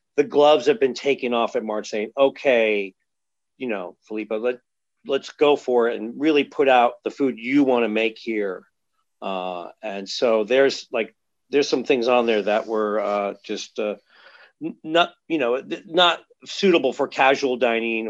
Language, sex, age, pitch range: English, male, 40-59, 110-140 Hz